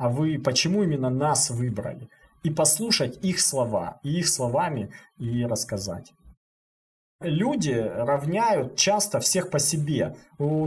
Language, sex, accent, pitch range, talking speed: Russian, male, native, 140-195 Hz, 125 wpm